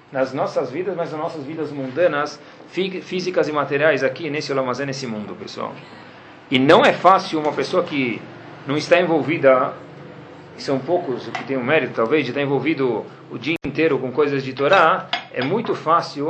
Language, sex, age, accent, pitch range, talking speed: Portuguese, male, 40-59, Brazilian, 135-180 Hz, 180 wpm